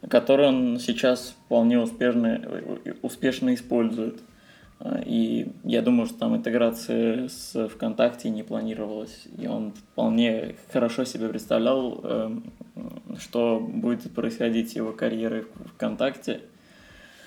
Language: Russian